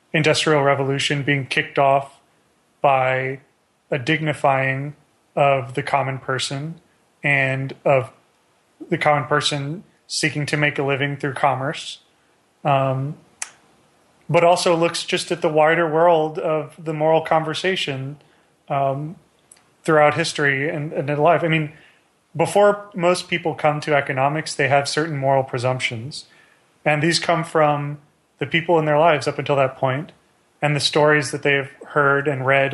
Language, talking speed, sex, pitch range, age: English, 145 wpm, male, 140-160 Hz, 30-49